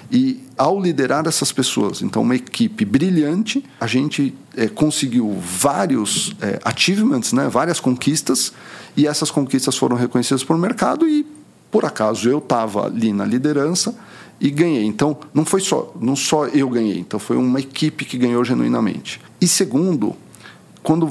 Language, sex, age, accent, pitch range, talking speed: Portuguese, male, 50-69, Brazilian, 115-165 Hz, 155 wpm